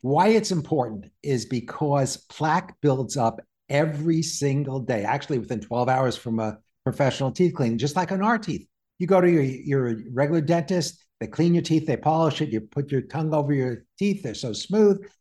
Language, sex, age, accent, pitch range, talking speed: English, male, 60-79, American, 135-190 Hz, 195 wpm